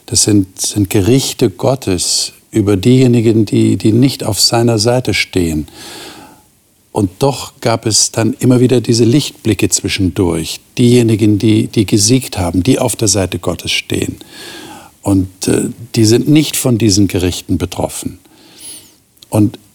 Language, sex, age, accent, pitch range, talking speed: German, male, 50-69, German, 100-130 Hz, 135 wpm